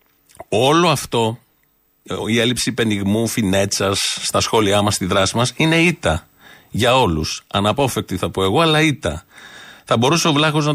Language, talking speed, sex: Greek, 150 wpm, male